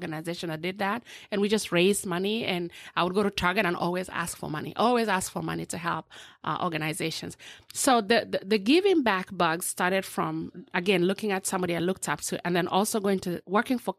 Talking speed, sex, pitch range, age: 220 wpm, female, 170-220 Hz, 30-49